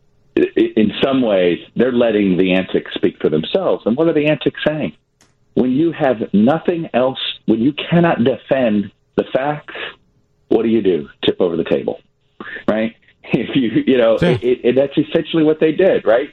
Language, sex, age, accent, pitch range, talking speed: English, male, 50-69, American, 110-155 Hz, 180 wpm